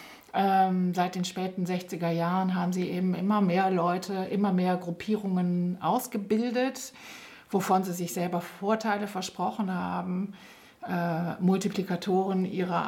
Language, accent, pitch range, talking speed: German, German, 175-205 Hz, 115 wpm